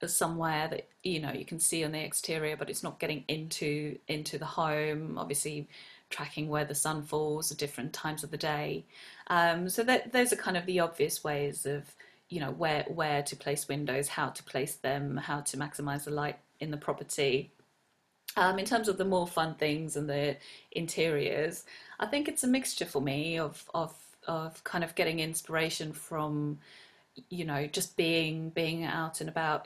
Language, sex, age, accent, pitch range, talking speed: English, female, 30-49, British, 145-165 Hz, 190 wpm